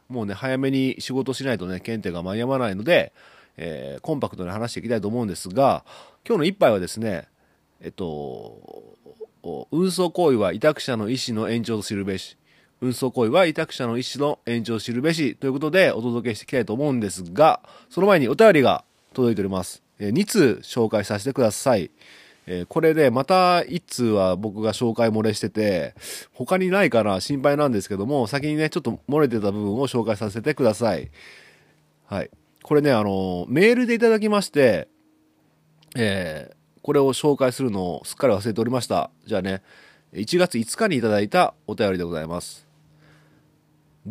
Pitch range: 110-150 Hz